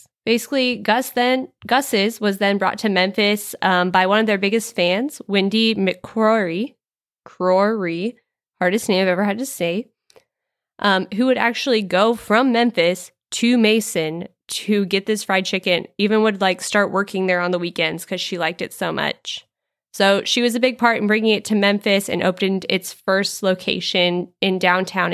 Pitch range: 185-235 Hz